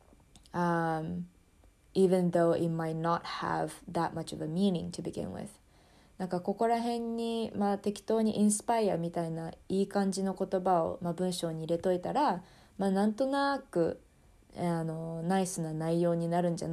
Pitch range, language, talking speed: 165-205 Hz, English, 55 wpm